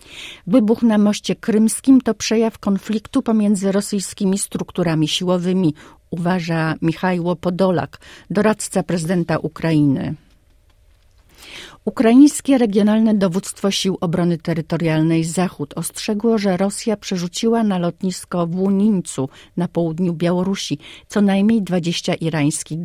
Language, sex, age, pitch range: Polish, female, 40-59, 155-195 Hz